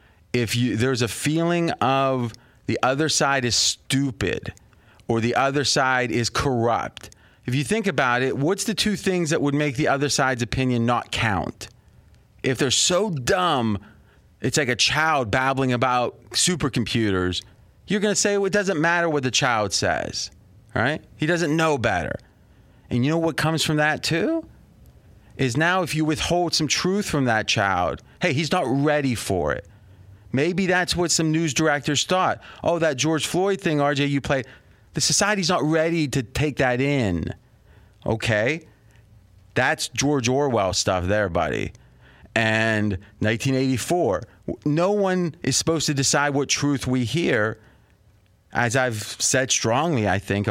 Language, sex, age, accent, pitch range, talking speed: English, male, 30-49, American, 115-160 Hz, 160 wpm